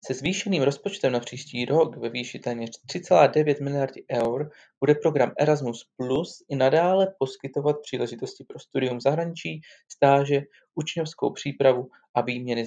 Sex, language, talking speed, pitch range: male, Czech, 130 wpm, 125-165 Hz